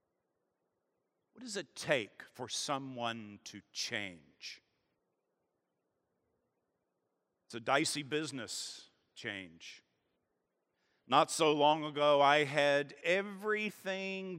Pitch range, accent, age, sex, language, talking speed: 125-185 Hz, American, 50-69, male, English, 85 wpm